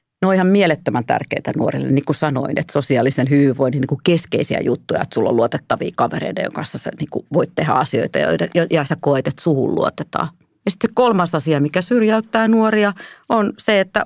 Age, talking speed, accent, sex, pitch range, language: 40-59, 190 wpm, native, female, 140-190 Hz, Finnish